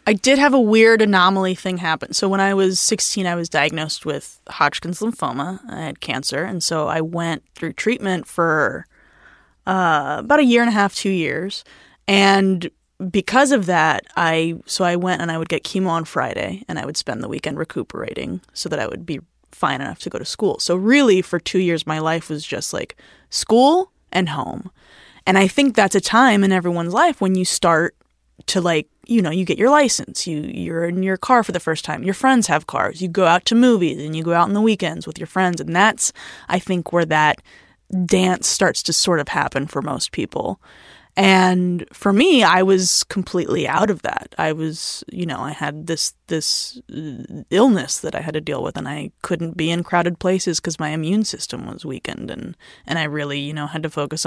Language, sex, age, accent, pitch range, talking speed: English, female, 10-29, American, 160-195 Hz, 215 wpm